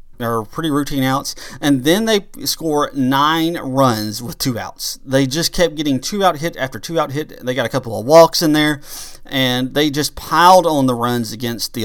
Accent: American